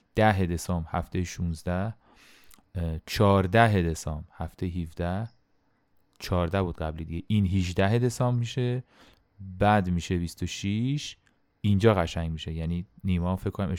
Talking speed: 115 wpm